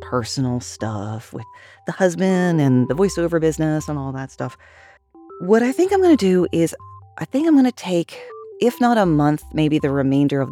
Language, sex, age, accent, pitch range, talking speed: English, female, 40-59, American, 130-175 Hz, 200 wpm